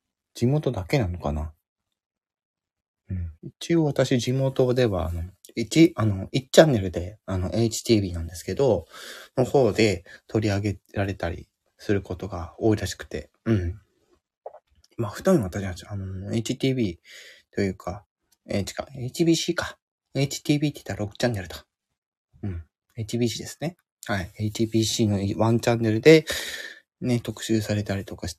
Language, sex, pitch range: Japanese, male, 95-120 Hz